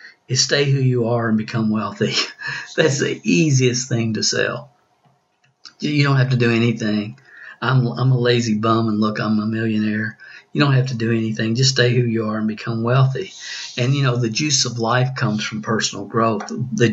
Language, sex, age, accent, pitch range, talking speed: English, male, 50-69, American, 110-125 Hz, 200 wpm